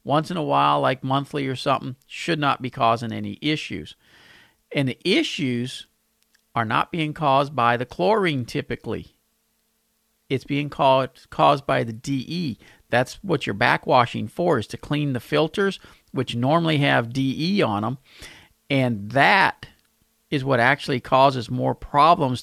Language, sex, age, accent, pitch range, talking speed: English, male, 50-69, American, 120-155 Hz, 150 wpm